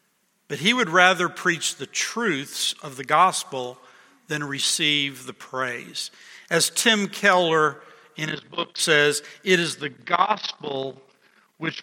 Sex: male